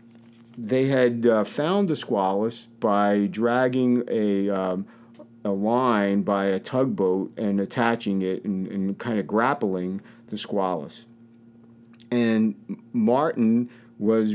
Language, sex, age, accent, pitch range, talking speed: English, male, 50-69, American, 110-120 Hz, 115 wpm